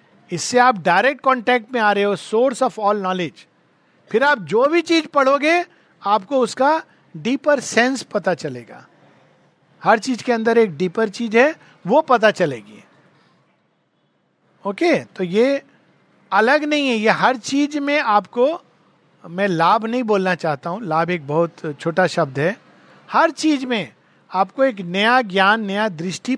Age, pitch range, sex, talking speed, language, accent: 50-69, 185-265 Hz, male, 155 wpm, Hindi, native